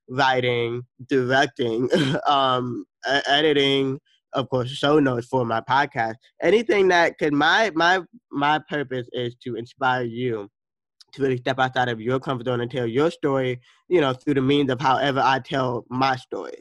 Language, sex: English, male